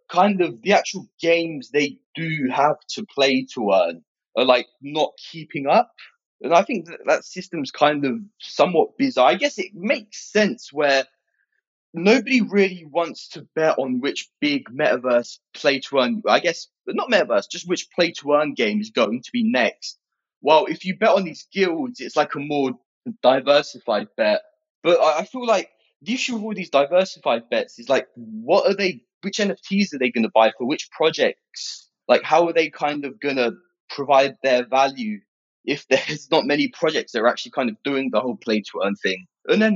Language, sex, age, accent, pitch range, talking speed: English, male, 20-39, British, 135-225 Hz, 190 wpm